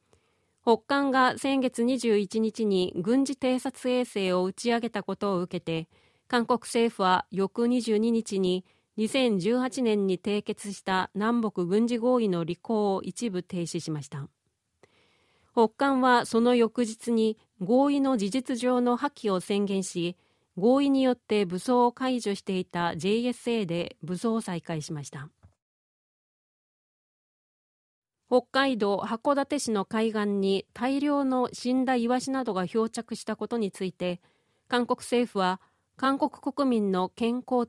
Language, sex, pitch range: Japanese, female, 190-250 Hz